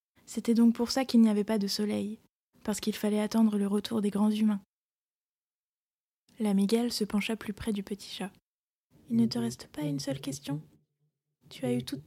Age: 20-39